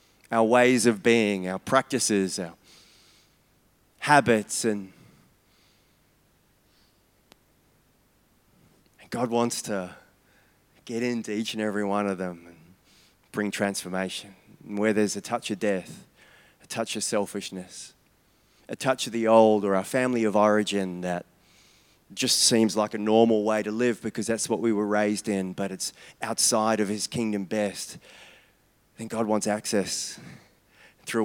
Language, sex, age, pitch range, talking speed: English, male, 20-39, 100-125 Hz, 135 wpm